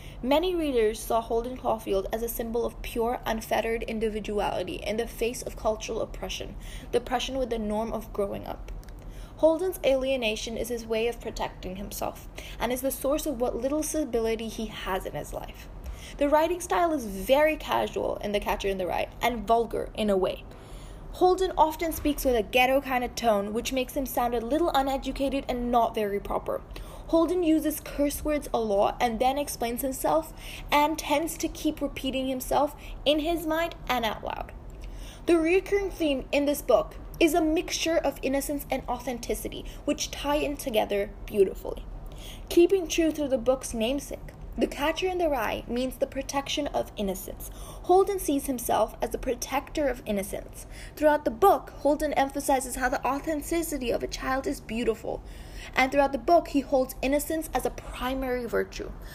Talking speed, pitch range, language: 175 wpm, 235-305 Hz, English